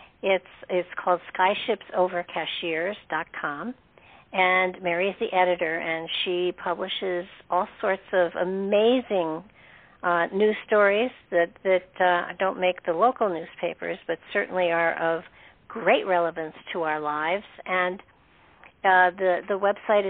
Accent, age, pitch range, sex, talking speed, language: American, 60-79, 175-205 Hz, female, 120 wpm, English